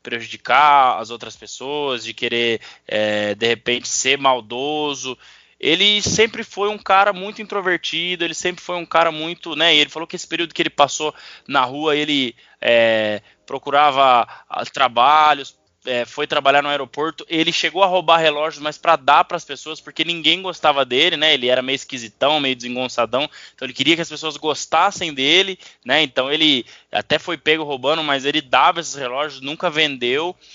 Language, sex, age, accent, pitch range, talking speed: Portuguese, male, 20-39, Brazilian, 120-155 Hz, 165 wpm